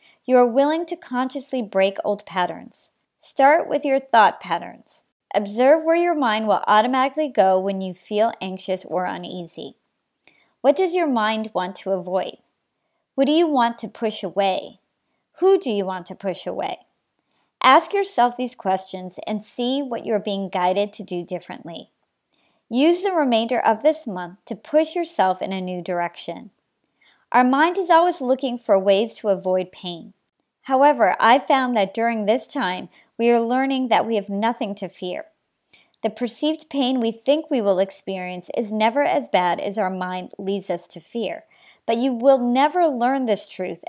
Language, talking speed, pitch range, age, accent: English, 170 wpm, 190-270 Hz, 40-59, American